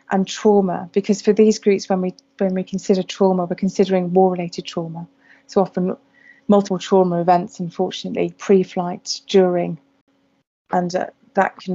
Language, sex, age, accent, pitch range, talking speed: English, female, 30-49, British, 175-195 Hz, 150 wpm